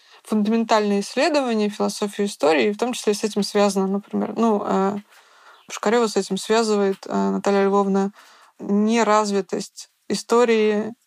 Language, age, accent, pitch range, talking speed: Russian, 20-39, native, 200-220 Hz, 110 wpm